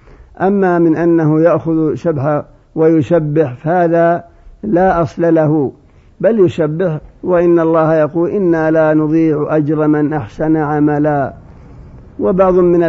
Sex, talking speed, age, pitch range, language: male, 110 wpm, 50-69, 155-170 Hz, Arabic